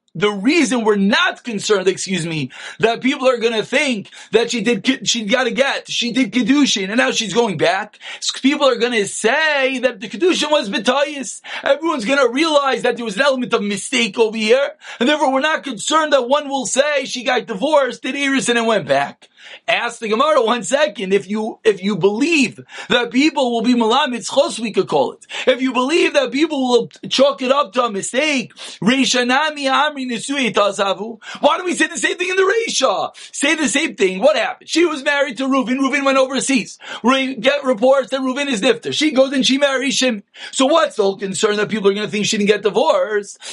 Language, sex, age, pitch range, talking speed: English, male, 30-49, 220-280 Hz, 210 wpm